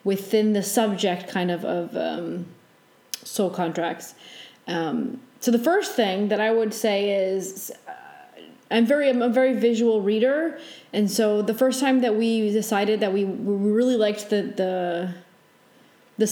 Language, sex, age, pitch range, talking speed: English, female, 30-49, 195-235 Hz, 160 wpm